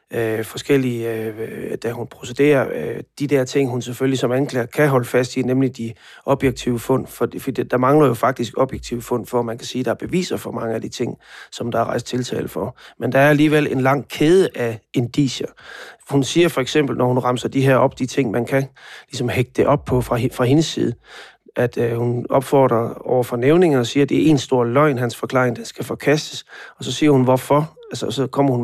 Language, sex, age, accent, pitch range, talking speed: Danish, male, 30-49, native, 120-140 Hz, 220 wpm